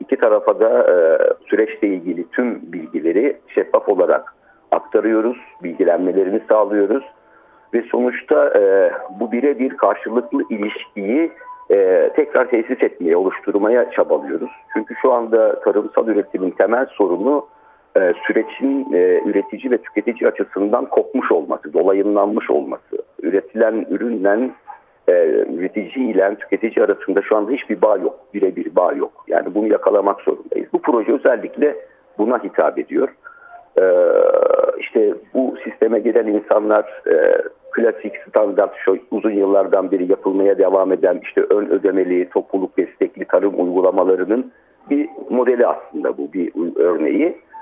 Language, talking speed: Turkish, 120 wpm